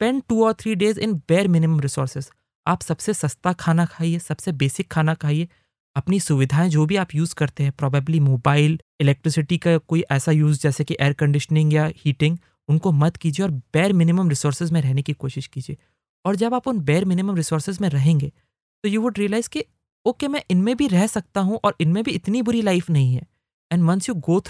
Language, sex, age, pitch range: English, male, 20-39, 150-200 Hz